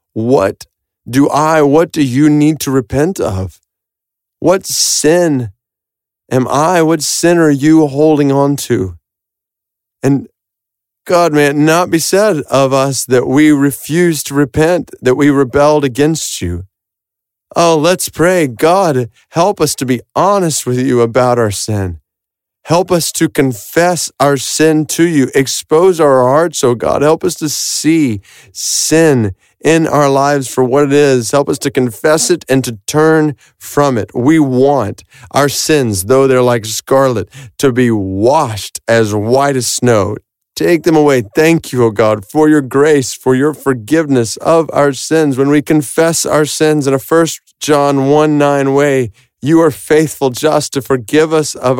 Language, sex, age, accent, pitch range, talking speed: English, male, 30-49, American, 120-155 Hz, 160 wpm